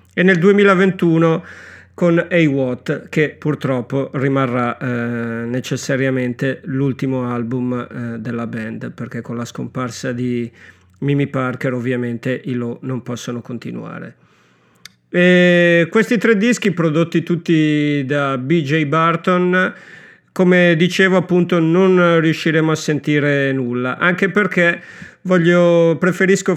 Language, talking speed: Italian, 110 wpm